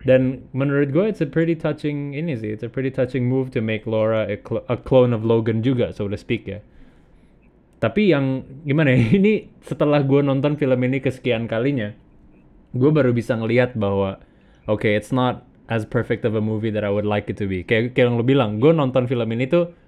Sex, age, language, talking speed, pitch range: male, 20-39, Indonesian, 200 wpm, 115-140 Hz